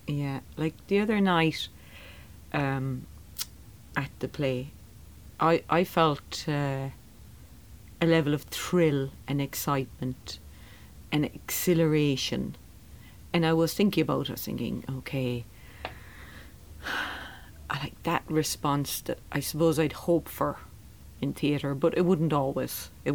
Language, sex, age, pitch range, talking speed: English, female, 40-59, 110-150 Hz, 125 wpm